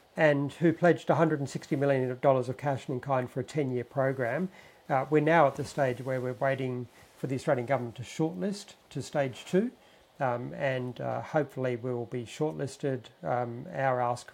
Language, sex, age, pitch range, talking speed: English, male, 50-69, 125-145 Hz, 175 wpm